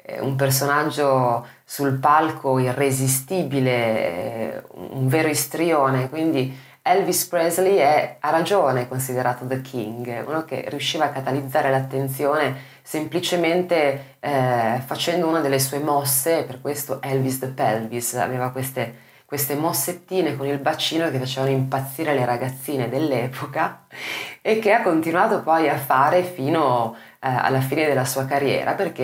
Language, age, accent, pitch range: Italian, 20-39, native, 130-150 Hz